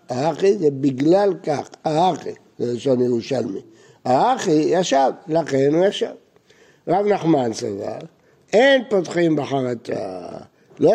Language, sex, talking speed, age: Hebrew, male, 110 wpm, 60-79